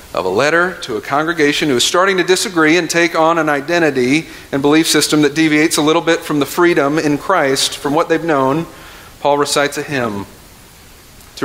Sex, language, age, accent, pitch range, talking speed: male, English, 50-69, American, 115-160 Hz, 200 wpm